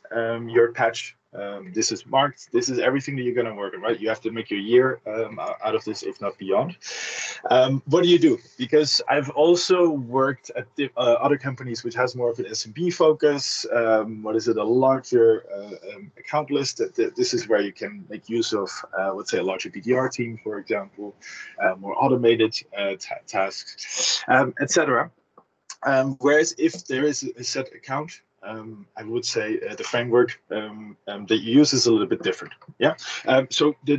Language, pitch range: English, 115-155 Hz